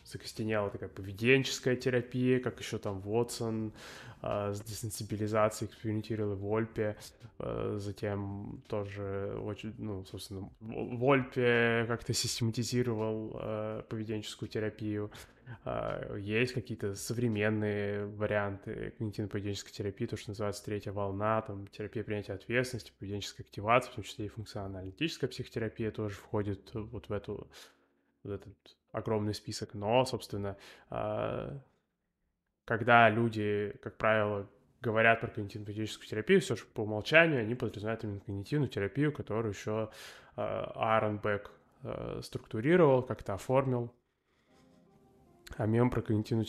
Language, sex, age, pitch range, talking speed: Russian, male, 20-39, 105-120 Hz, 115 wpm